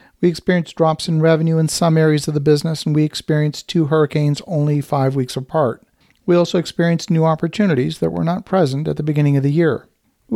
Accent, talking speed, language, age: American, 210 wpm, English, 50-69